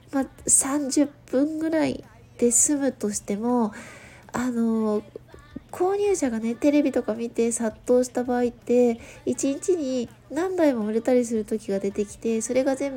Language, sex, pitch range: Japanese, female, 225-275 Hz